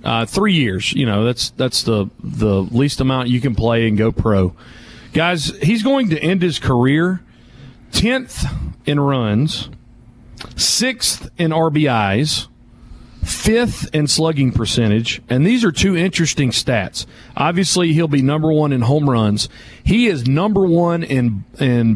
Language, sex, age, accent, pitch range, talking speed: English, male, 40-59, American, 120-155 Hz, 150 wpm